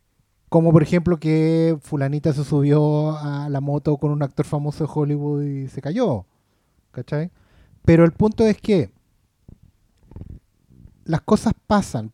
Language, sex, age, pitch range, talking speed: Spanish, male, 30-49, 135-180 Hz, 140 wpm